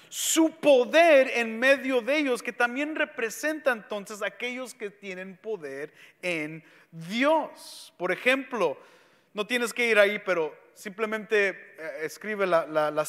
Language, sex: English, male